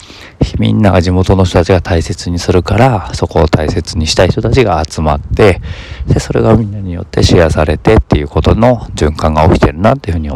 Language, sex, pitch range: Japanese, male, 80-100 Hz